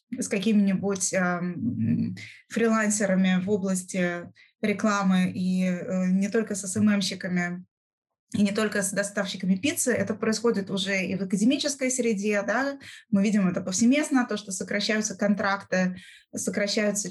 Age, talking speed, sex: 20-39, 125 wpm, female